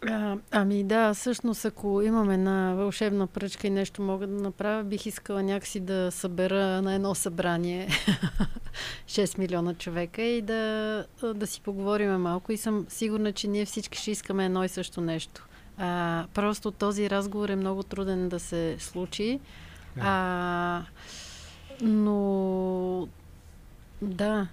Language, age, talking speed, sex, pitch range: Bulgarian, 30-49, 135 wpm, female, 185-210 Hz